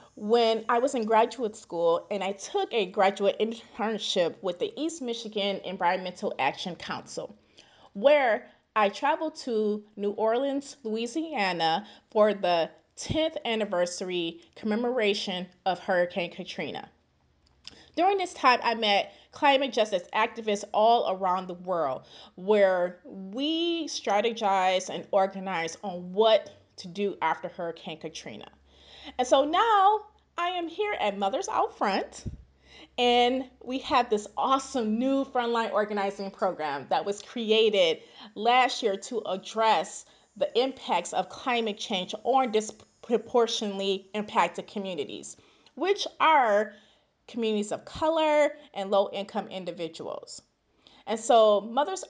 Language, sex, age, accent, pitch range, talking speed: English, female, 30-49, American, 195-255 Hz, 120 wpm